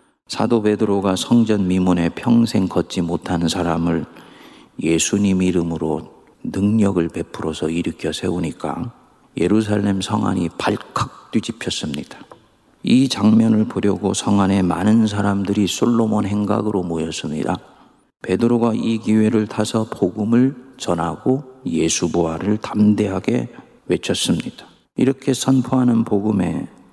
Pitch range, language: 90-115 Hz, Korean